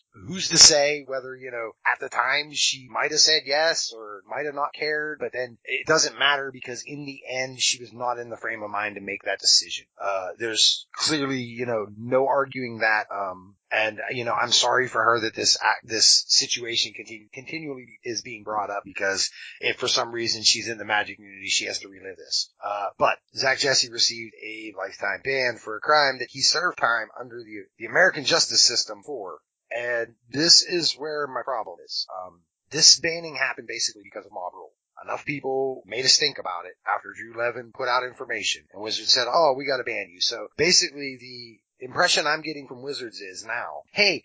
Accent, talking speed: American, 205 wpm